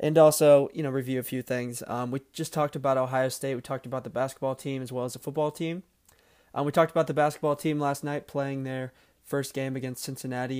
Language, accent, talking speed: English, American, 240 wpm